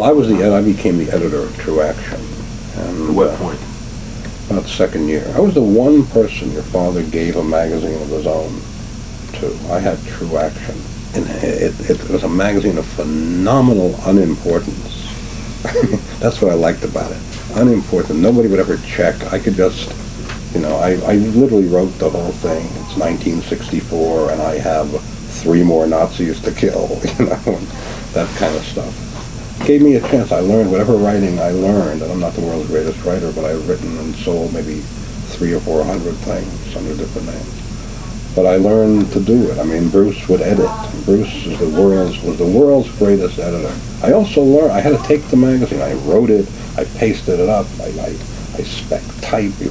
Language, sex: English, male